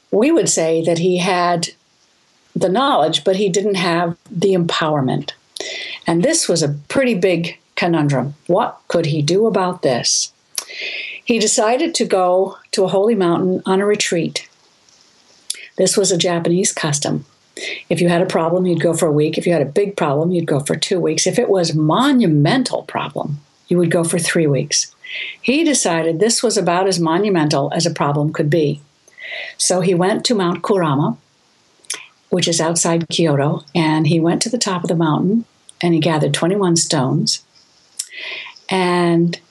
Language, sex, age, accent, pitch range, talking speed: English, female, 60-79, American, 160-195 Hz, 170 wpm